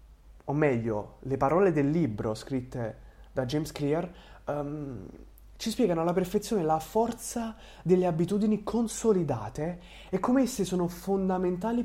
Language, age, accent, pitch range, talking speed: Italian, 20-39, native, 145-205 Hz, 125 wpm